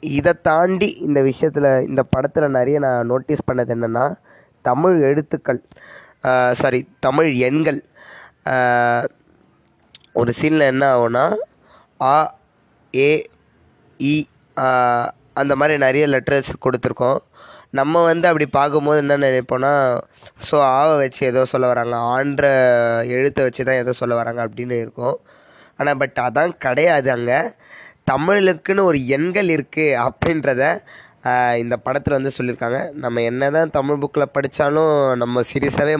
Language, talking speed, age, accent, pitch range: Tamil, 110 wpm, 20-39, native, 125-145 Hz